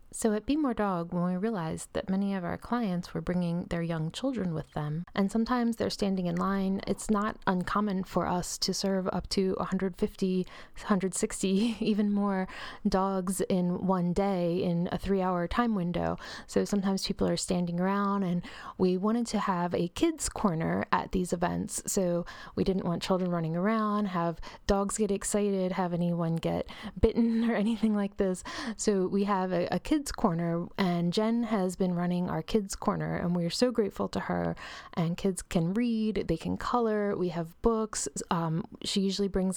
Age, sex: 20-39, female